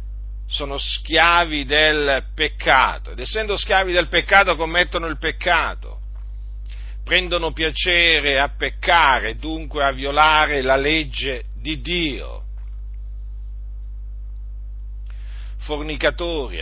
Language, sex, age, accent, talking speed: Italian, male, 50-69, native, 85 wpm